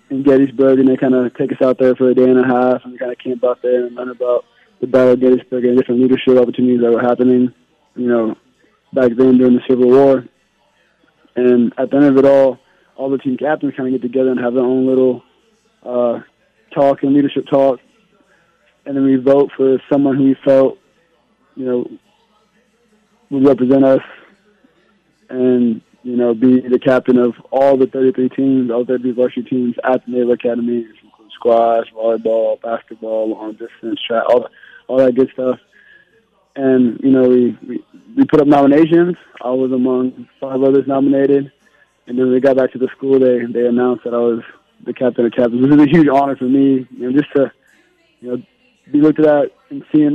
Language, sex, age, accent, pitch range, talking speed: English, male, 20-39, American, 125-140 Hz, 205 wpm